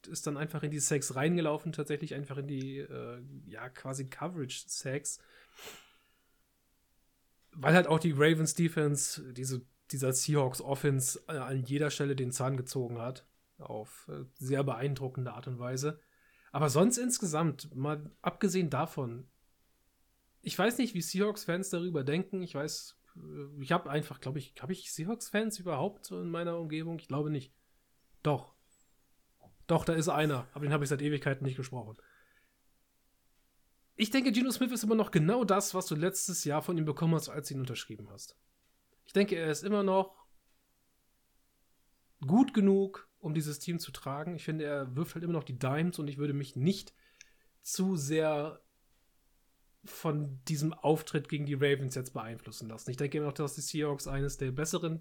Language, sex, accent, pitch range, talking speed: German, male, German, 140-170 Hz, 165 wpm